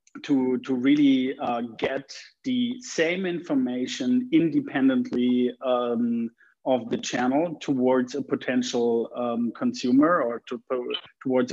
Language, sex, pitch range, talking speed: English, male, 125-160 Hz, 115 wpm